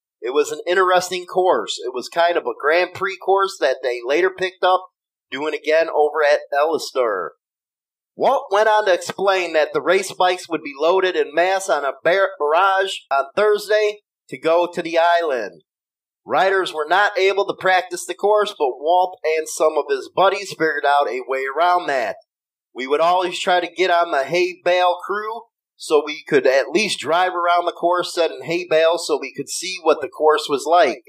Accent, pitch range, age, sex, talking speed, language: American, 155-195 Hz, 30-49, male, 195 wpm, English